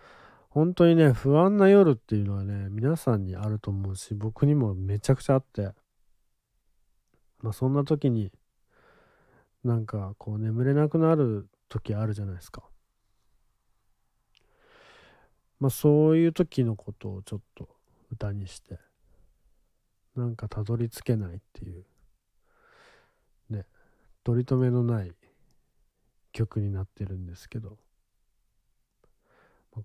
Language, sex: Japanese, male